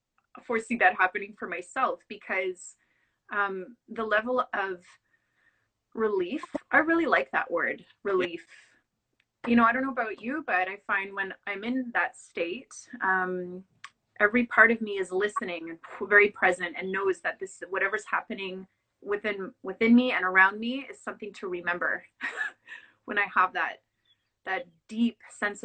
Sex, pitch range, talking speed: female, 190-250 Hz, 150 wpm